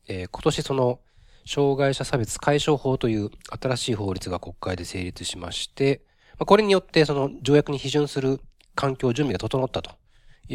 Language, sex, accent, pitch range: Japanese, male, native, 95-140 Hz